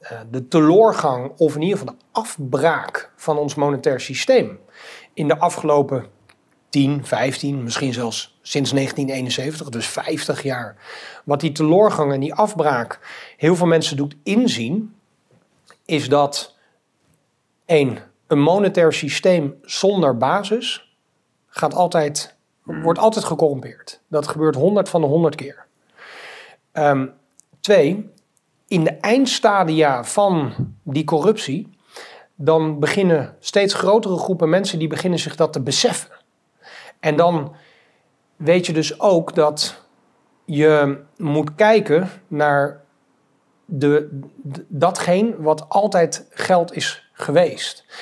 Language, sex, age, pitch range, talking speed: Dutch, male, 40-59, 145-180 Hz, 115 wpm